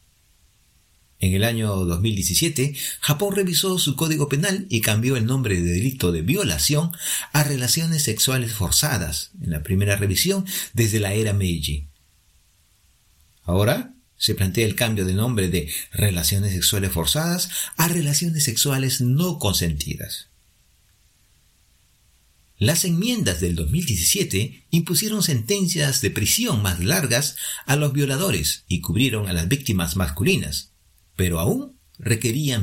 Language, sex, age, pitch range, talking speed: Spanish, male, 50-69, 90-150 Hz, 125 wpm